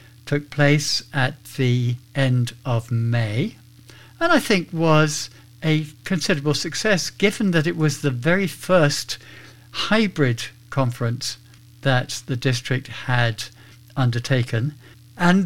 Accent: British